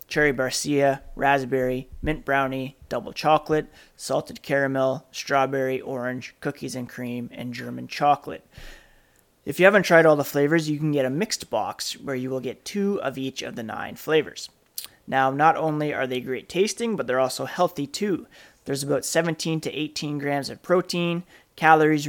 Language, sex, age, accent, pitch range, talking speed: English, male, 30-49, American, 130-160 Hz, 170 wpm